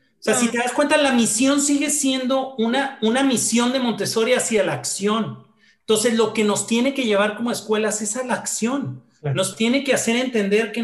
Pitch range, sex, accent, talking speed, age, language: 170-235 Hz, male, Mexican, 205 wpm, 40-59, Spanish